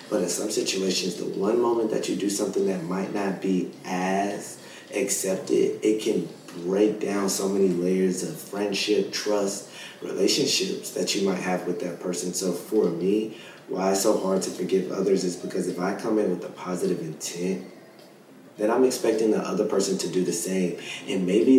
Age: 30-49